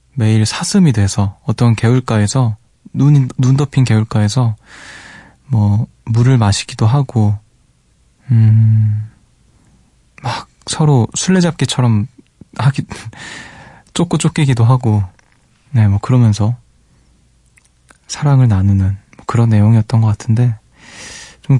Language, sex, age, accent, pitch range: Korean, male, 20-39, native, 110-140 Hz